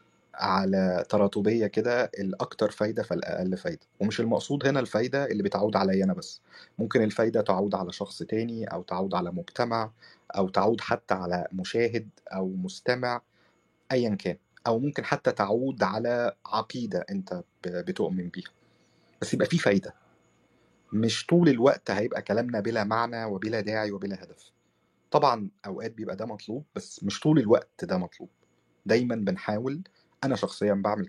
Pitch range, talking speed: 95-120 Hz, 145 wpm